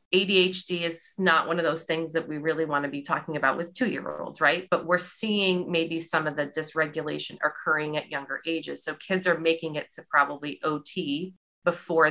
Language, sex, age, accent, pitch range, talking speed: English, female, 30-49, American, 150-180 Hz, 195 wpm